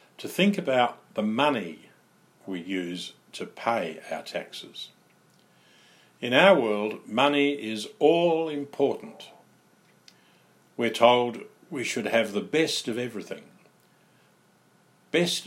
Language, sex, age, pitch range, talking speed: English, male, 50-69, 105-155 Hz, 110 wpm